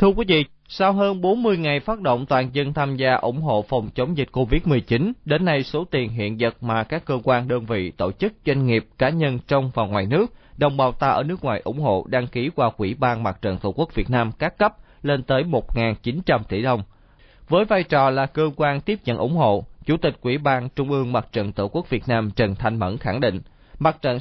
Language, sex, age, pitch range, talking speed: Vietnamese, male, 20-39, 115-150 Hz, 240 wpm